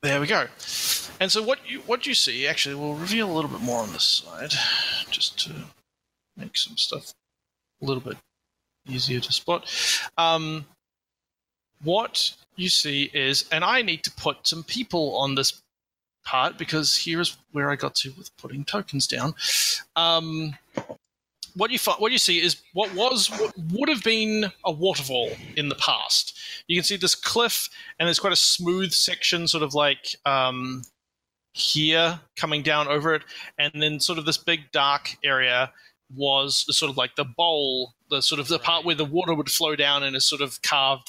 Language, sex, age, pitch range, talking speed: English, male, 30-49, 140-175 Hz, 185 wpm